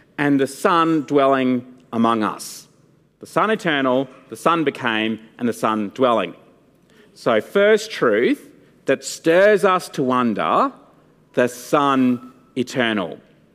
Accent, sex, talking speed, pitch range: Australian, male, 120 wpm, 120-180 Hz